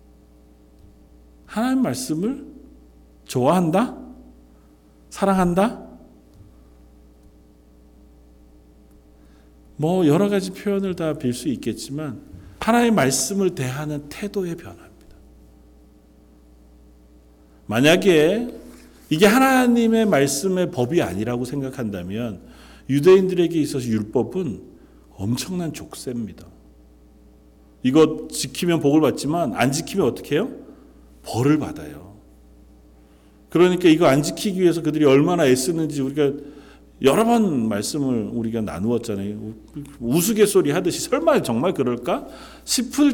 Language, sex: Korean, male